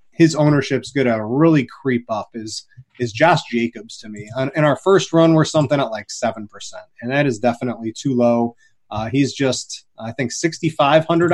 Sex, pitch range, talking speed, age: male, 125-170 Hz, 185 wpm, 30-49